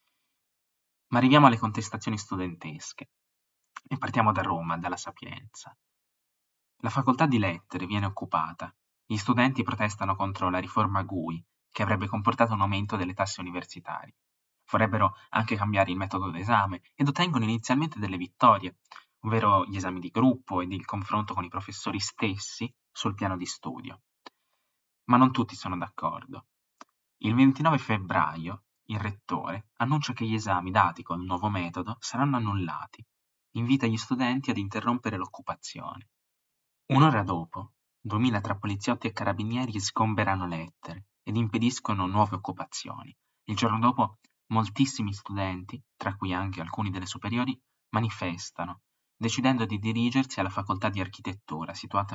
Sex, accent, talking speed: male, native, 135 wpm